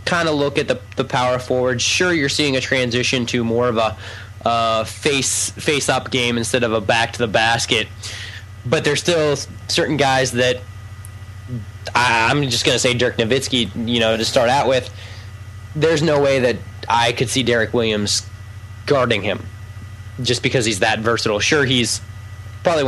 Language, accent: English, American